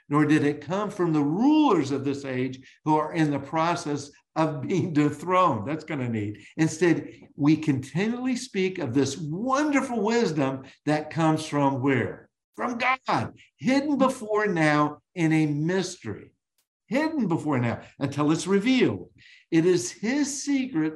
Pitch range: 140-200 Hz